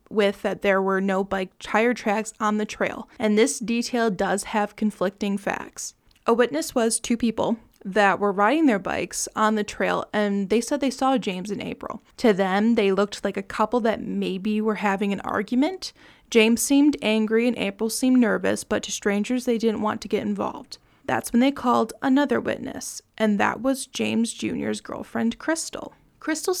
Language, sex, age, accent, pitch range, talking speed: English, female, 20-39, American, 215-250 Hz, 185 wpm